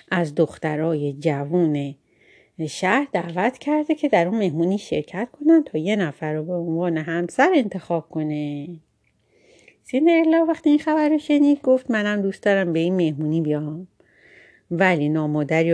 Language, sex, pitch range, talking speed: Persian, female, 160-250 Hz, 135 wpm